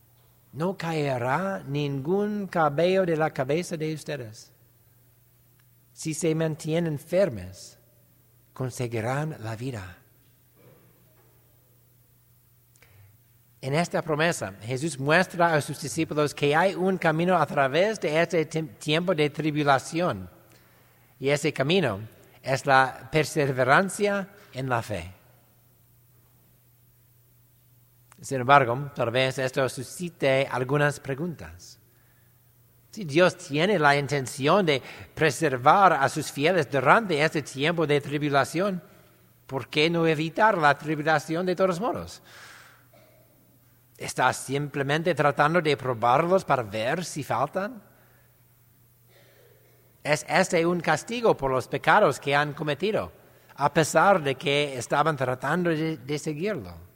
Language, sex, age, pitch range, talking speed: English, male, 60-79, 120-160 Hz, 110 wpm